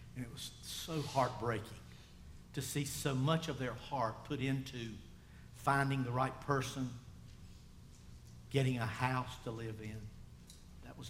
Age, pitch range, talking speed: 50-69, 105-140 Hz, 140 wpm